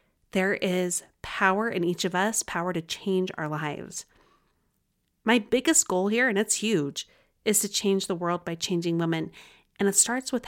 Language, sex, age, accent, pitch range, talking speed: English, female, 30-49, American, 175-220 Hz, 180 wpm